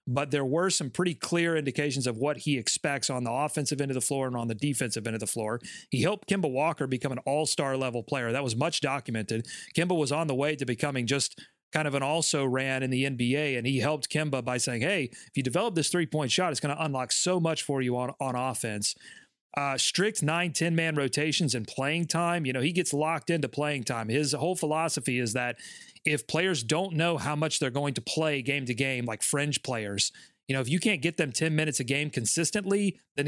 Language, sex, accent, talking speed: English, male, American, 235 wpm